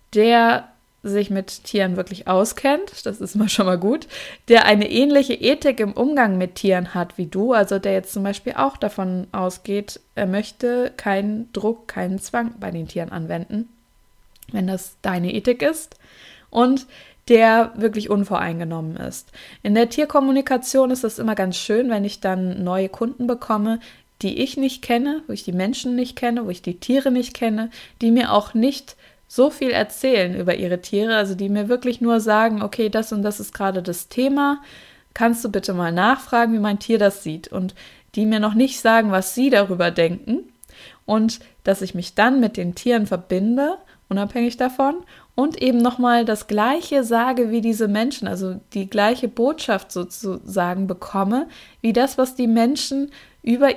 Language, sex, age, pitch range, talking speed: German, female, 20-39, 195-250 Hz, 175 wpm